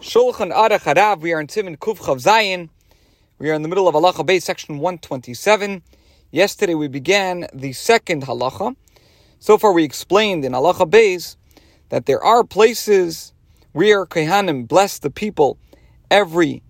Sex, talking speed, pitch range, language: male, 150 wpm, 125-185 Hz, English